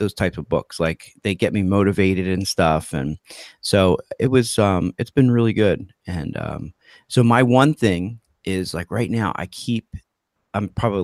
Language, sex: English, male